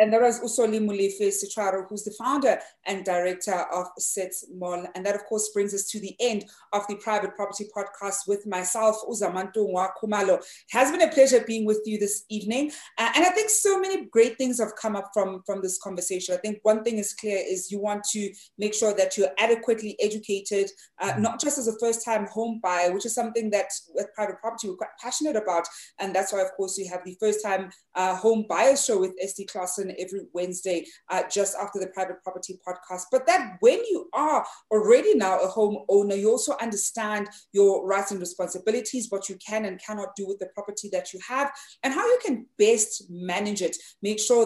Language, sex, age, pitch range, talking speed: English, female, 30-49, 190-225 Hz, 205 wpm